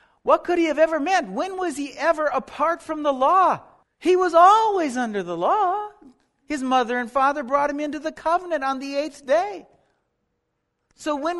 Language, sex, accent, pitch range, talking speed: English, male, American, 225-295 Hz, 185 wpm